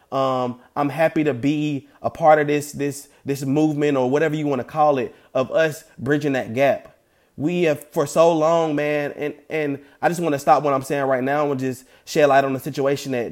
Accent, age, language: American, 20-39, English